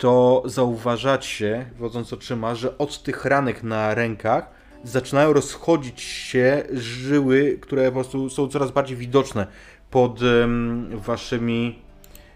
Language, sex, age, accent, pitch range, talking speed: Polish, male, 30-49, native, 105-140 Hz, 115 wpm